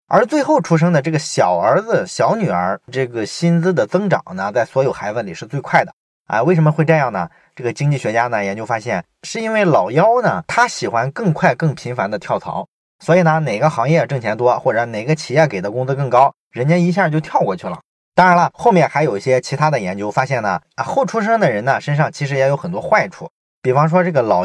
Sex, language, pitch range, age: male, Chinese, 125-175 Hz, 20-39